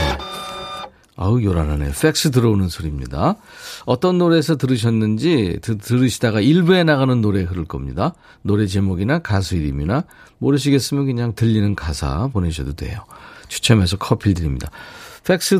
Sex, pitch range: male, 95-145 Hz